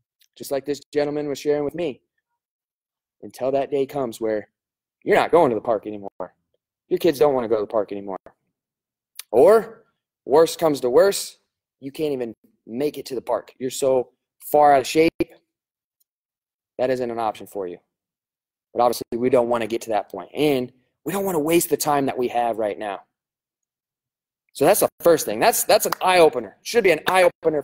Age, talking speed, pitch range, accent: 20-39, 200 wpm, 130-190 Hz, American